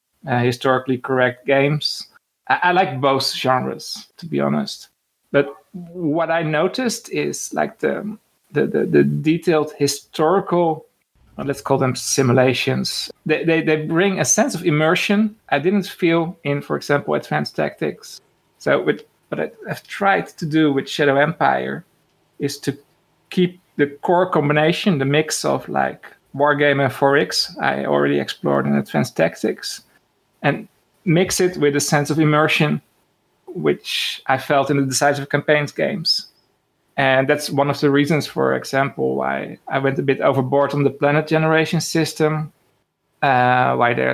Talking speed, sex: 155 wpm, male